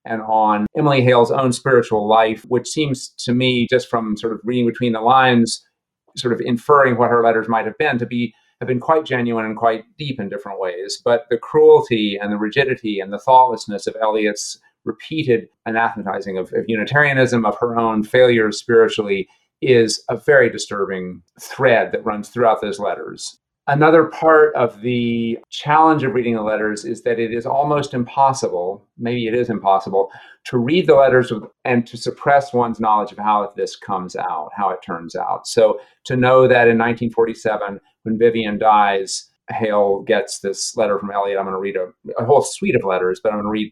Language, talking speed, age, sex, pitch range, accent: English, 190 wpm, 40-59, male, 105-130 Hz, American